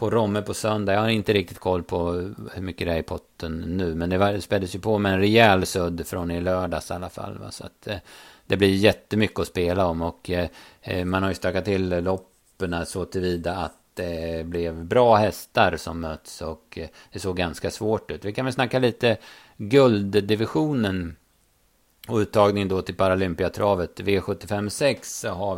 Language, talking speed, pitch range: Swedish, 190 wpm, 90-110 Hz